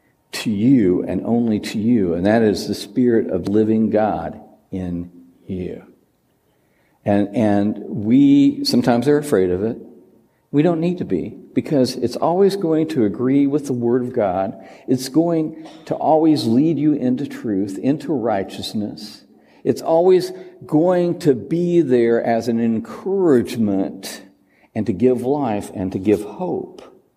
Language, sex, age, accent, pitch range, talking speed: English, male, 60-79, American, 105-160 Hz, 150 wpm